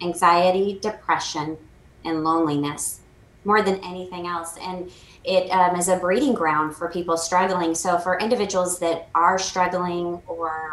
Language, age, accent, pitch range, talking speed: English, 30-49, American, 155-180 Hz, 140 wpm